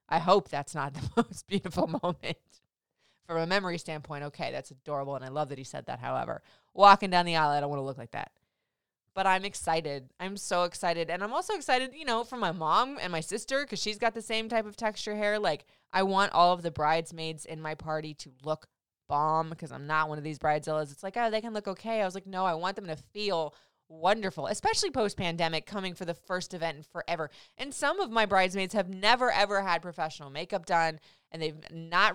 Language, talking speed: English, 225 wpm